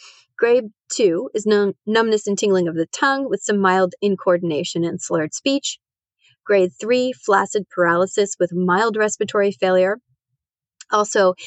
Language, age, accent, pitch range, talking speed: English, 30-49, American, 175-220 Hz, 130 wpm